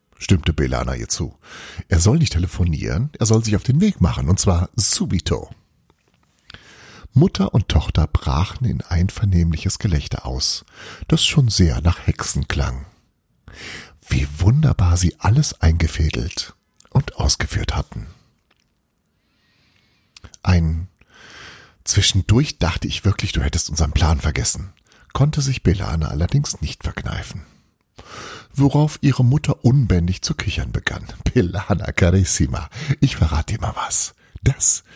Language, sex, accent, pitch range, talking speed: German, male, German, 85-115 Hz, 125 wpm